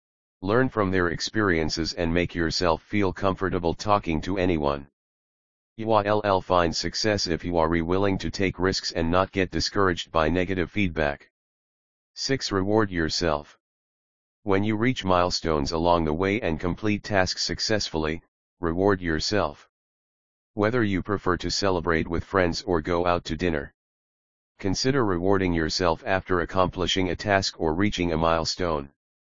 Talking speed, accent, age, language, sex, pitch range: 140 wpm, American, 40-59, English, male, 80-100 Hz